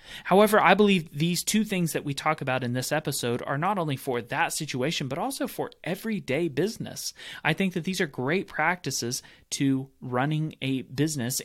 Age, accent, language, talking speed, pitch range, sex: 30-49, American, English, 185 wpm, 130-160 Hz, male